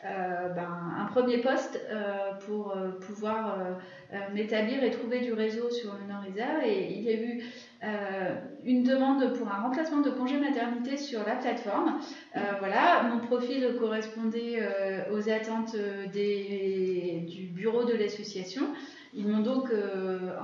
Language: French